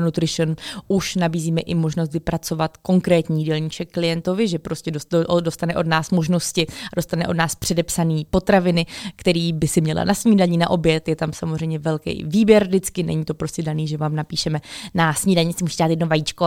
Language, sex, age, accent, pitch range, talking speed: Czech, female, 20-39, native, 165-185 Hz, 170 wpm